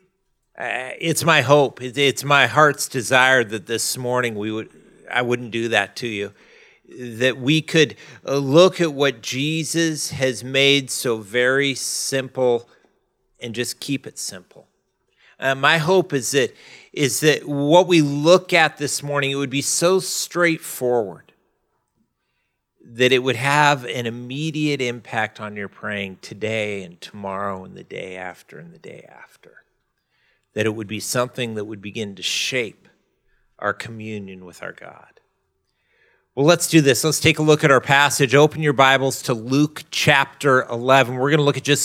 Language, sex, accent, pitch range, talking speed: English, male, American, 120-155 Hz, 165 wpm